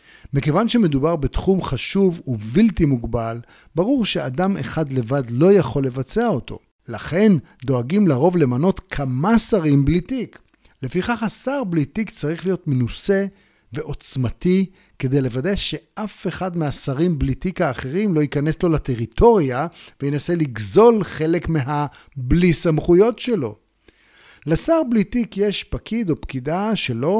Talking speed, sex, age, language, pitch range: 120 wpm, male, 50-69, Hebrew, 135-195 Hz